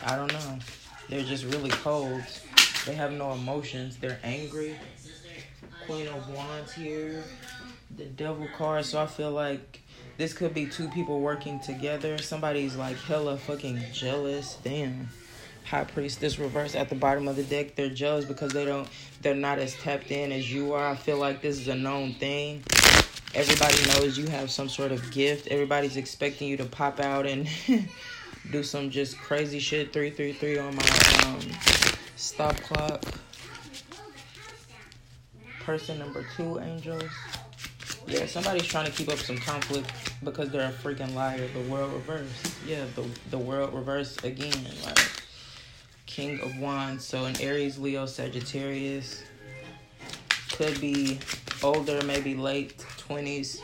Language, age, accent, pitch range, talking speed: English, 20-39, American, 130-145 Hz, 150 wpm